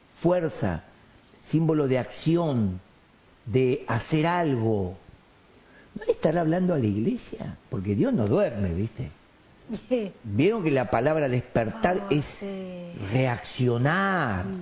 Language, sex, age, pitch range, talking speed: Spanish, male, 50-69, 145-240 Hz, 105 wpm